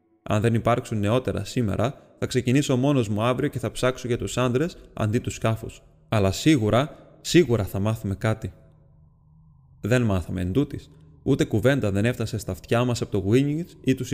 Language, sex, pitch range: Greek, male, 105-130 Hz